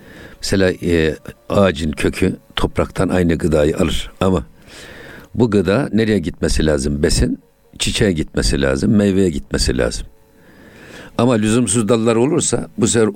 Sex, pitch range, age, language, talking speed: male, 85-110 Hz, 60-79, Turkish, 125 wpm